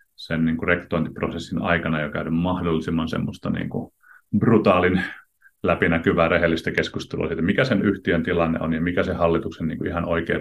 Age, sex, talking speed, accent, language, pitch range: 30-49, male, 165 wpm, native, Finnish, 85-100 Hz